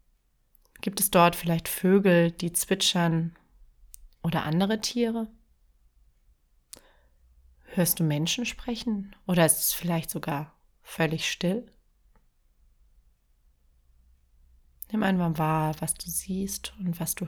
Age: 30-49